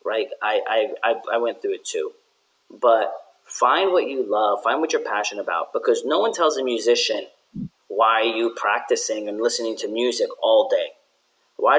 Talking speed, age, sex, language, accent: 180 wpm, 30-49, male, English, American